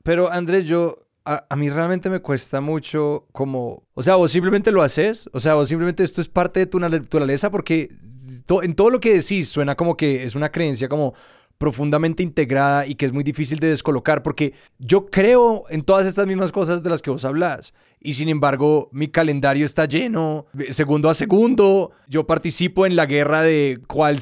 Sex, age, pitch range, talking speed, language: male, 20-39, 145-180 Hz, 200 wpm, Spanish